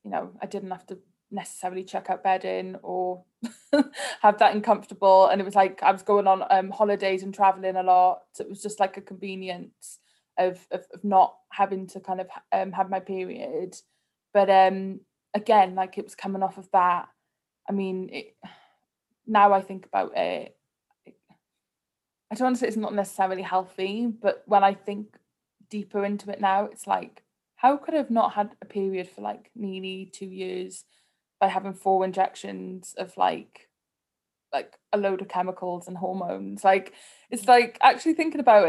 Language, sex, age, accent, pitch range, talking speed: English, female, 20-39, British, 185-205 Hz, 180 wpm